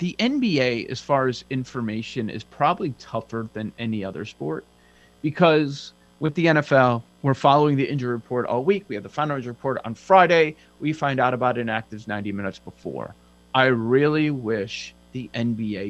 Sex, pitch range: male, 115-160 Hz